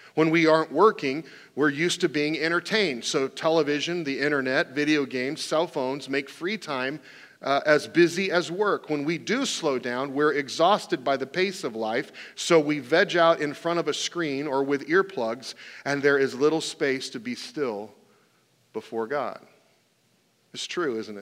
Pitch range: 140-175 Hz